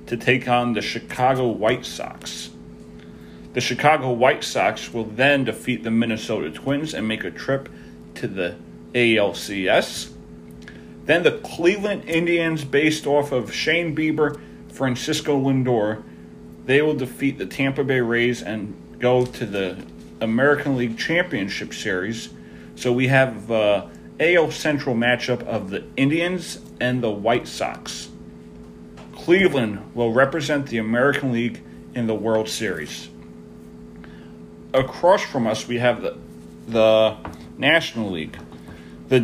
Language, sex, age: English, male, 40-59